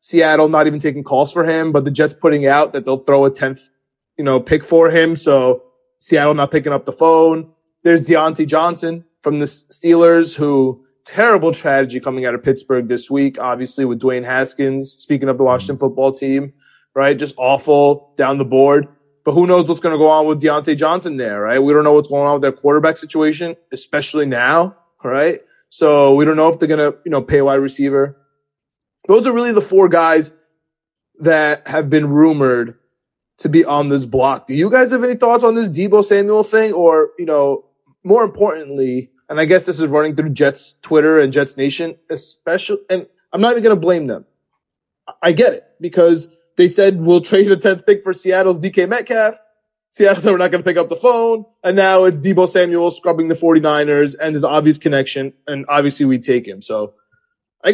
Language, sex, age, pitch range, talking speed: English, male, 20-39, 140-175 Hz, 205 wpm